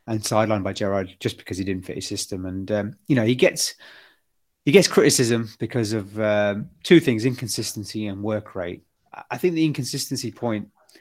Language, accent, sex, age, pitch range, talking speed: English, British, male, 30-49, 105-125 Hz, 185 wpm